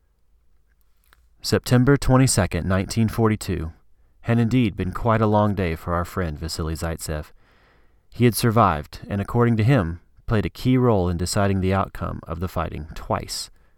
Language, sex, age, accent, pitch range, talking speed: English, male, 30-49, American, 85-110 Hz, 150 wpm